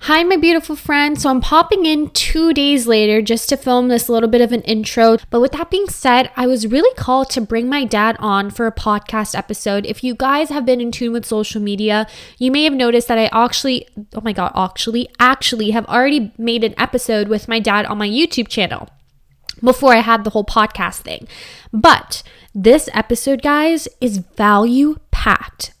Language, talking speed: English, 200 wpm